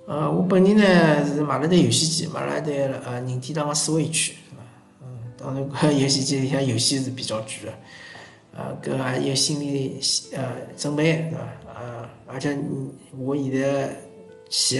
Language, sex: Chinese, male